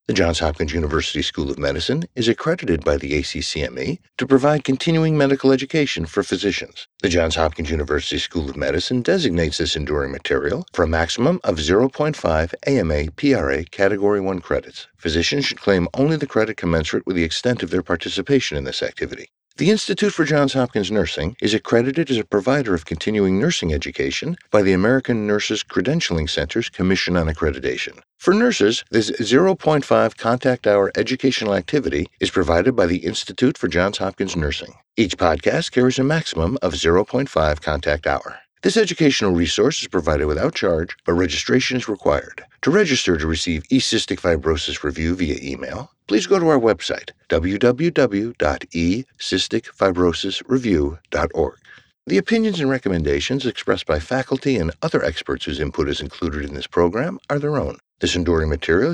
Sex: male